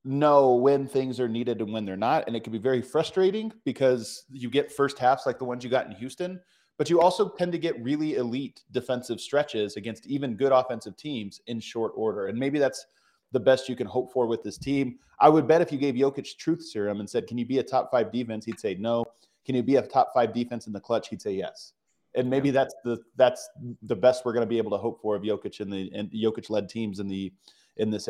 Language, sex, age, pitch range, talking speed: English, male, 30-49, 115-160 Hz, 250 wpm